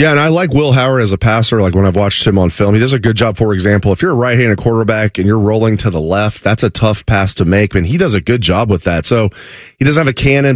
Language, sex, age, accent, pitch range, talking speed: English, male, 30-49, American, 100-125 Hz, 305 wpm